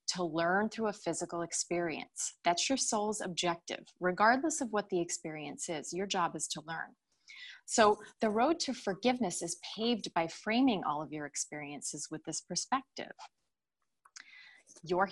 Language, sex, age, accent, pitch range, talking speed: English, female, 20-39, American, 170-235 Hz, 150 wpm